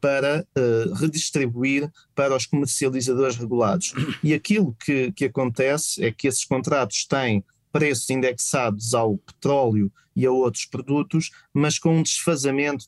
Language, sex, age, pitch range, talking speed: Portuguese, male, 20-39, 125-150 Hz, 130 wpm